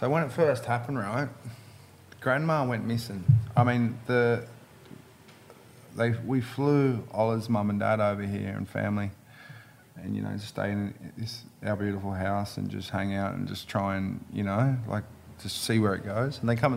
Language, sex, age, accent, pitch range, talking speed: English, male, 20-39, Australian, 110-125 Hz, 185 wpm